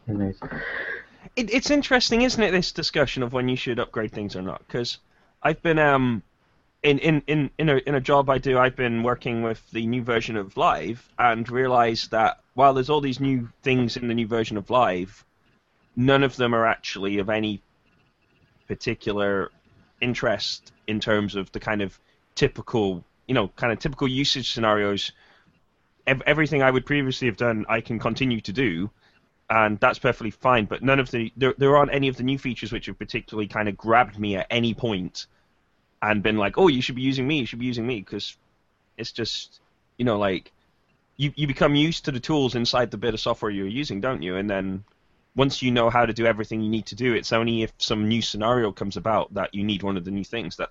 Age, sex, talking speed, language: 20-39, male, 210 wpm, English